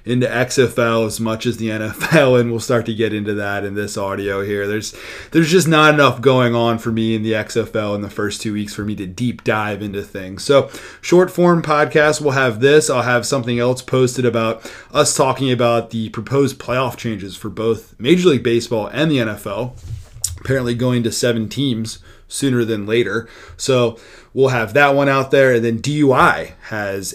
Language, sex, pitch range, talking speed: English, male, 110-135 Hz, 195 wpm